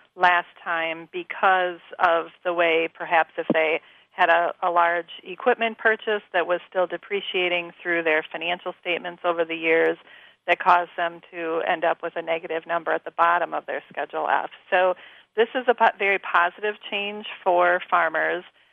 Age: 40-59